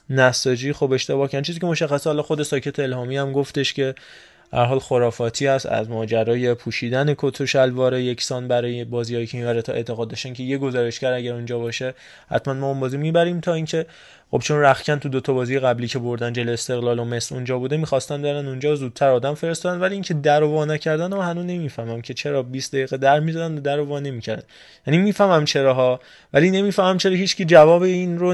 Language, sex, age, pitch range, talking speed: Persian, male, 20-39, 125-165 Hz, 195 wpm